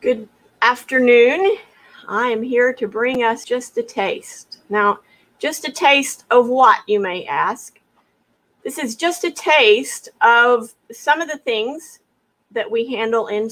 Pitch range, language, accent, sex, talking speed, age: 210-290 Hz, English, American, female, 150 wpm, 50-69